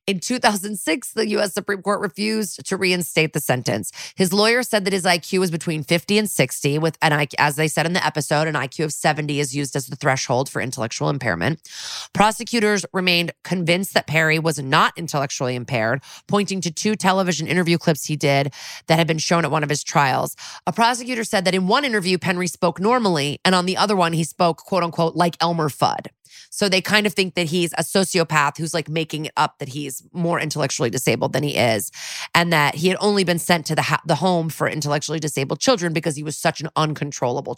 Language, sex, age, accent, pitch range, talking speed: English, female, 20-39, American, 150-190 Hz, 215 wpm